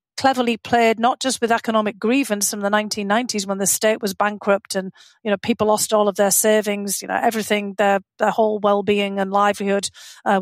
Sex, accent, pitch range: female, British, 210-245 Hz